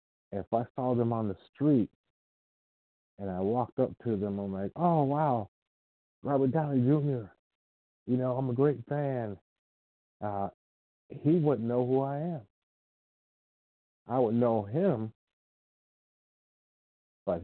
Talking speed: 130 wpm